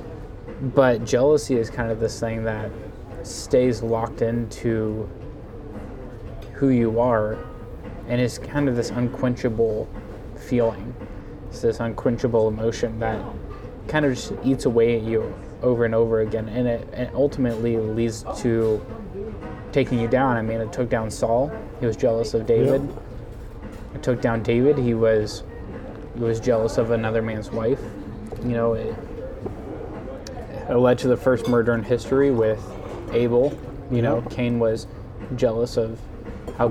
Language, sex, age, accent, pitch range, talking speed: English, male, 20-39, American, 110-125 Hz, 145 wpm